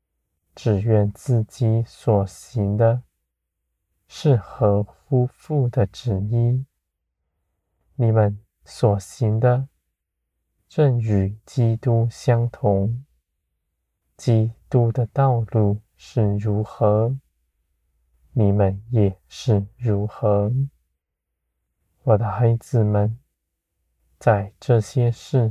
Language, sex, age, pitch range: Chinese, male, 20-39, 80-115 Hz